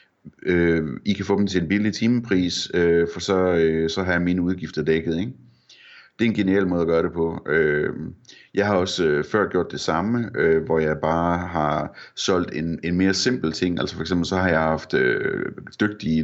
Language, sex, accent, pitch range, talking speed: Danish, male, native, 80-95 Hz, 185 wpm